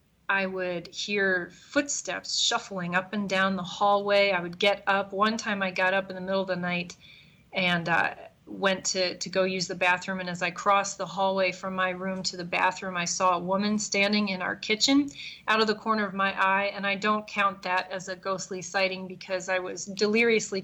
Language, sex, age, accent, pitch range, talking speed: English, female, 30-49, American, 180-195 Hz, 220 wpm